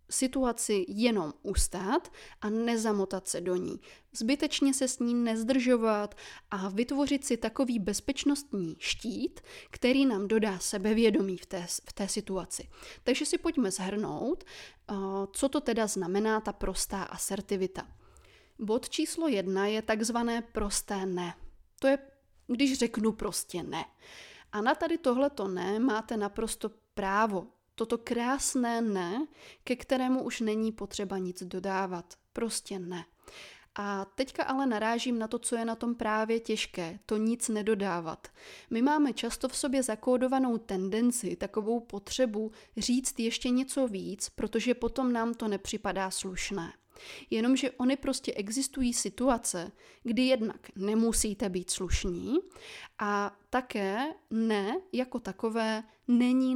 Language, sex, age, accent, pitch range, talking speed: Czech, female, 20-39, native, 205-255 Hz, 130 wpm